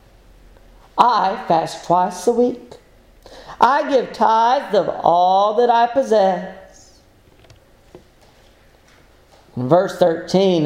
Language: English